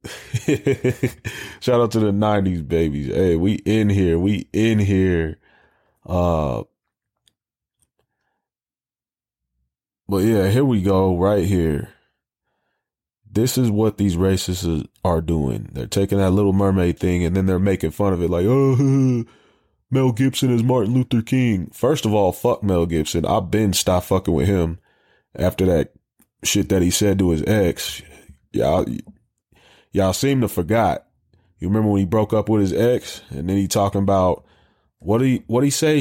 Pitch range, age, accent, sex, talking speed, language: 90-110 Hz, 20-39, American, male, 160 wpm, English